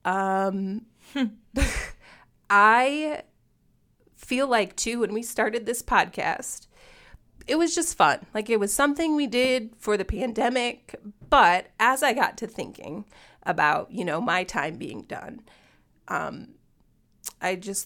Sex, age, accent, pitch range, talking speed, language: female, 30-49, American, 195-255 Hz, 130 wpm, English